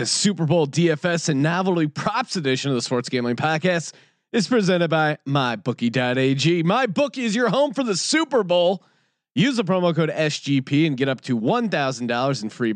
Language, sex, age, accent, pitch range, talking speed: English, male, 30-49, American, 135-195 Hz, 175 wpm